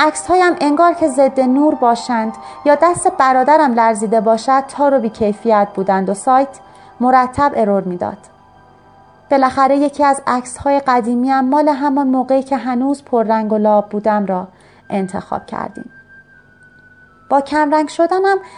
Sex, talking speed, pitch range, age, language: female, 135 wpm, 220-290 Hz, 30-49, Persian